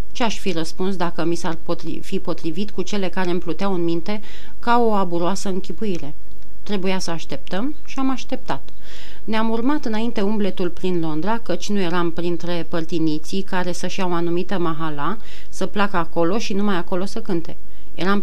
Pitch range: 175-210 Hz